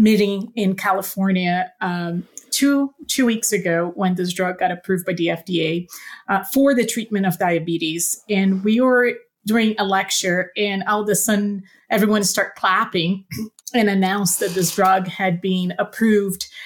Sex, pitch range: female, 185-225 Hz